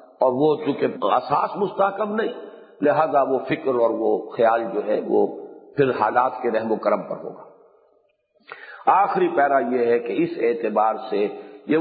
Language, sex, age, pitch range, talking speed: Urdu, male, 50-69, 135-195 Hz, 165 wpm